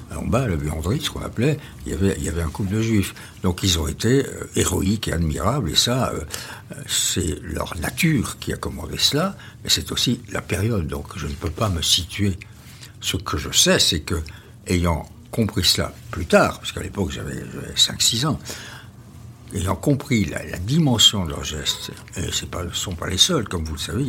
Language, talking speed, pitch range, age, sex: French, 200 wpm, 85-115 Hz, 60-79, male